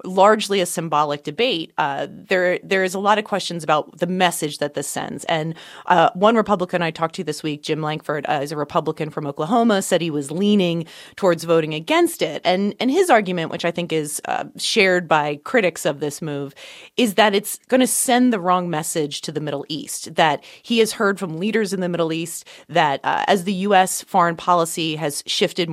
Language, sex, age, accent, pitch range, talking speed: English, female, 30-49, American, 155-190 Hz, 210 wpm